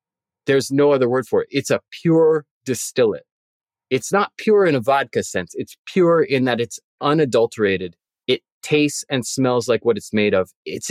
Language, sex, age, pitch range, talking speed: English, male, 30-49, 105-145 Hz, 180 wpm